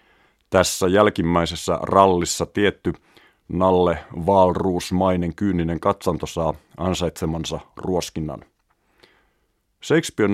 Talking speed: 70 wpm